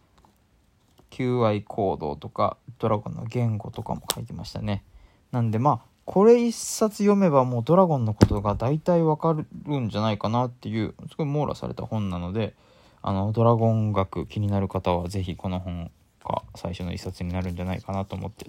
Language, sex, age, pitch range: Japanese, male, 20-39, 100-135 Hz